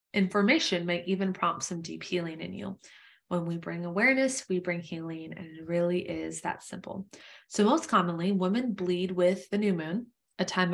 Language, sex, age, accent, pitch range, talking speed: English, female, 20-39, American, 170-205 Hz, 185 wpm